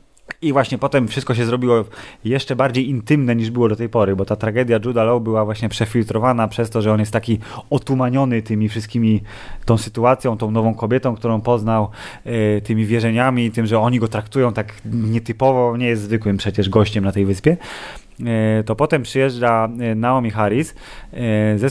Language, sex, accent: Polish, male, native